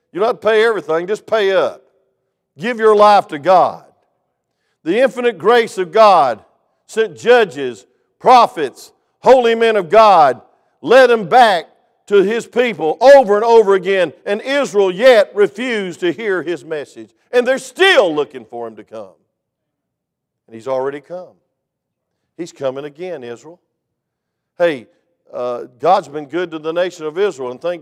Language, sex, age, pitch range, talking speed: English, male, 50-69, 160-230 Hz, 155 wpm